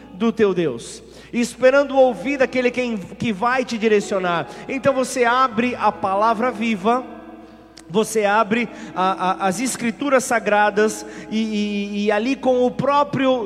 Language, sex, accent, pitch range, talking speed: Portuguese, male, Brazilian, 220-260 Hz, 125 wpm